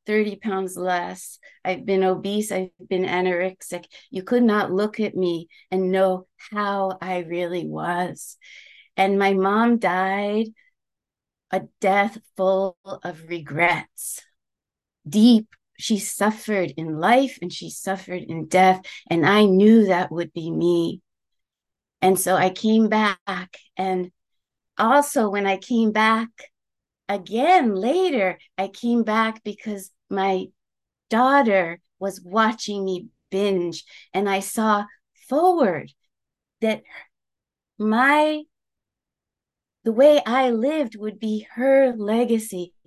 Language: English